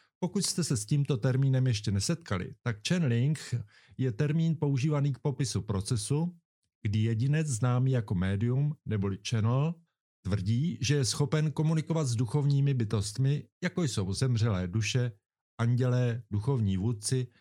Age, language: 50-69, Czech